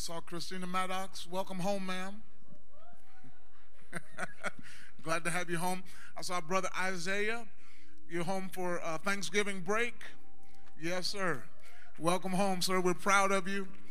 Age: 30-49